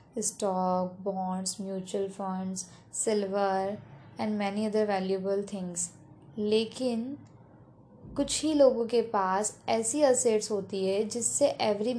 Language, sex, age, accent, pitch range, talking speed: Hindi, female, 20-39, native, 195-255 Hz, 110 wpm